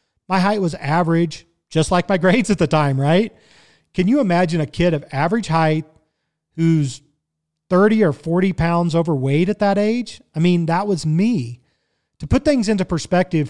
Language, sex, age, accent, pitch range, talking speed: English, male, 40-59, American, 150-185 Hz, 175 wpm